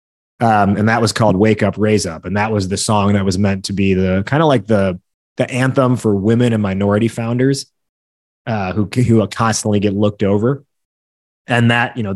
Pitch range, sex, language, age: 100-130 Hz, male, English, 30-49